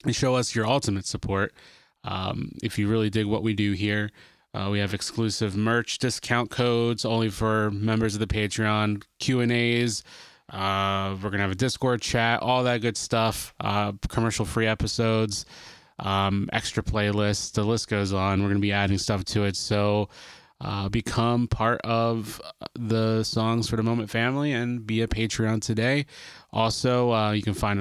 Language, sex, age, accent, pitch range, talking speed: English, male, 20-39, American, 105-115 Hz, 170 wpm